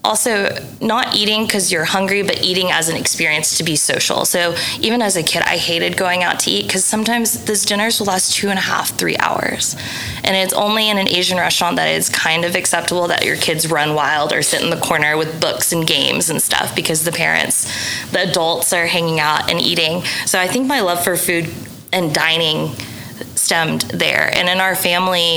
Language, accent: English, American